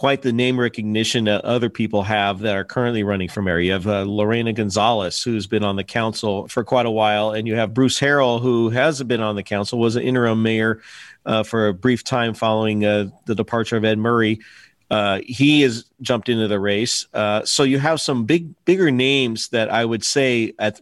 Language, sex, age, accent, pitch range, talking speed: English, male, 40-59, American, 110-130 Hz, 215 wpm